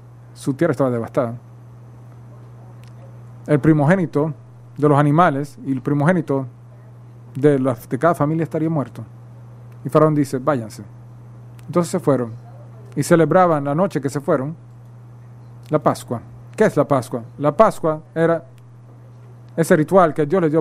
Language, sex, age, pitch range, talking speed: English, male, 40-59, 120-160 Hz, 140 wpm